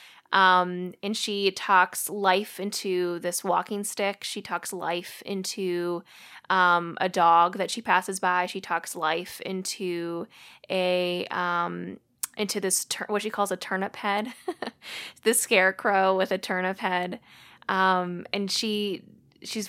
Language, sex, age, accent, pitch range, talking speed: English, female, 20-39, American, 180-205 Hz, 135 wpm